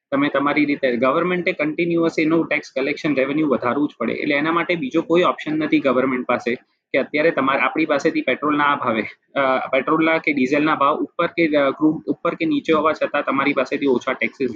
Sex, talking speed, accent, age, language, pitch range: male, 175 wpm, native, 20-39, Gujarati, 135-165 Hz